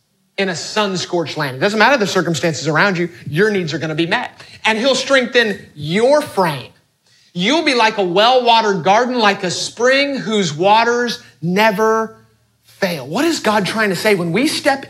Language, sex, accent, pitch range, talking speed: English, male, American, 180-265 Hz, 175 wpm